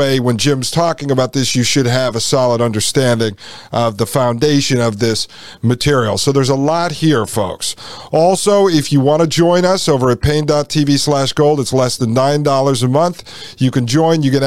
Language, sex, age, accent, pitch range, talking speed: English, male, 40-59, American, 125-150 Hz, 190 wpm